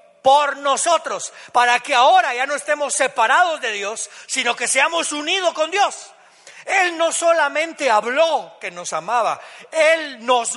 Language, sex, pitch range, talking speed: Spanish, male, 185-255 Hz, 150 wpm